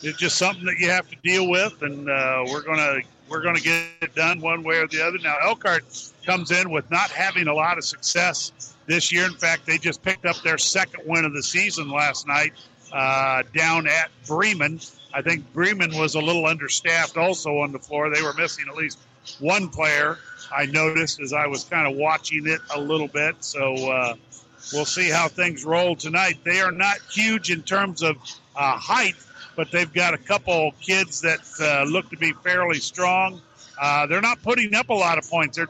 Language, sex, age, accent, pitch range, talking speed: English, male, 50-69, American, 150-175 Hz, 210 wpm